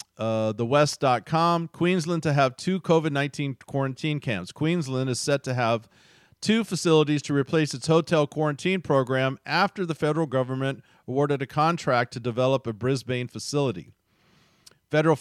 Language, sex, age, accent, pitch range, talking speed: English, male, 40-59, American, 125-155 Hz, 140 wpm